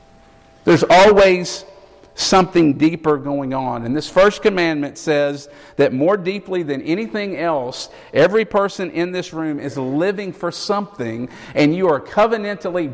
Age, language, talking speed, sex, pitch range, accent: 50-69, English, 140 wpm, male, 145-185 Hz, American